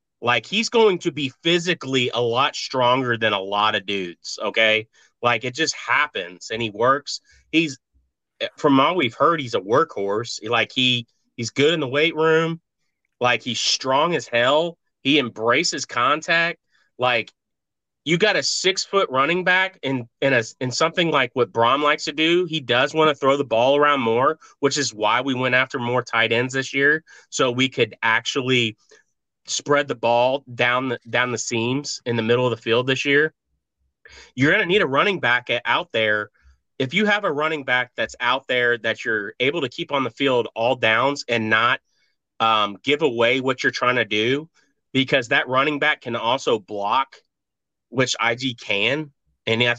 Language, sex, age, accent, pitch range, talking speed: English, male, 30-49, American, 115-150 Hz, 190 wpm